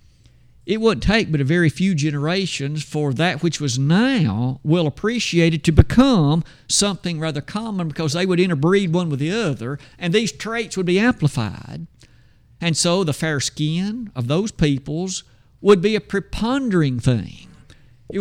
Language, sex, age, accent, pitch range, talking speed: English, male, 50-69, American, 135-180 Hz, 160 wpm